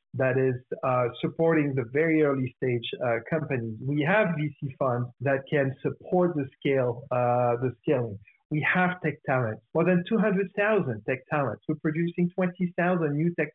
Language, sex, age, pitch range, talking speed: Ukrainian, male, 50-69, 135-185 Hz, 160 wpm